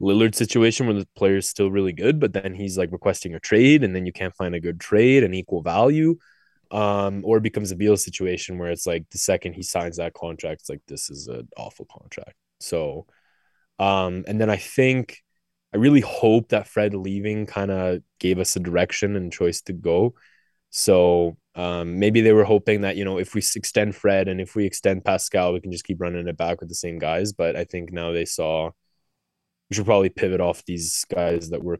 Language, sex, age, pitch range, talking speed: English, male, 20-39, 85-105 Hz, 220 wpm